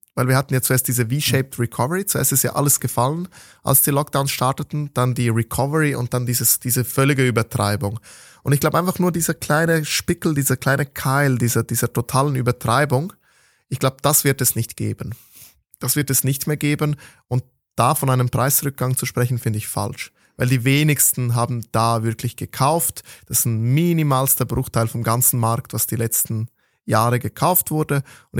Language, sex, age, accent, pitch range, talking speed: German, male, 20-39, German, 115-135 Hz, 180 wpm